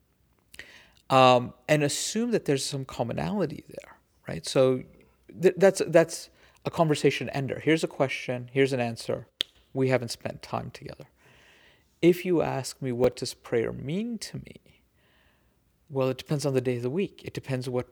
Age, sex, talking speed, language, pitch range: 50-69, male, 160 wpm, English, 125-165 Hz